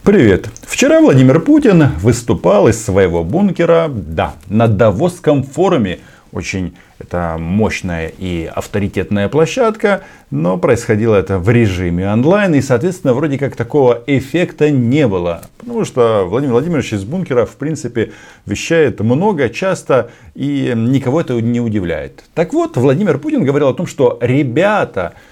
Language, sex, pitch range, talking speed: Russian, male, 100-140 Hz, 135 wpm